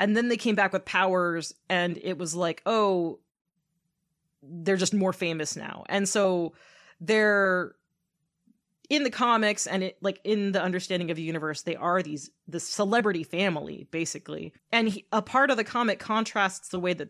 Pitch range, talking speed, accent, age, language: 160-205 Hz, 175 wpm, American, 30-49, English